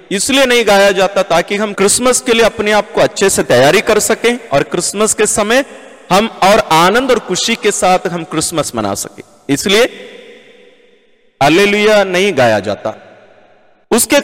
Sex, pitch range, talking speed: male, 185-235 Hz, 160 wpm